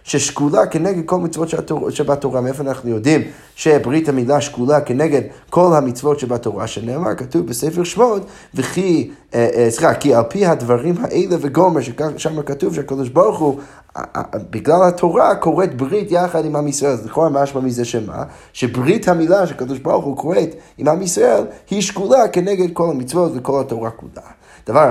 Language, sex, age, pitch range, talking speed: Hebrew, male, 20-39, 125-165 Hz, 130 wpm